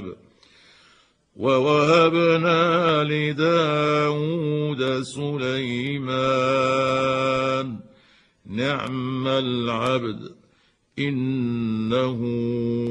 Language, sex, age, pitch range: Arabic, male, 50-69, 120-135 Hz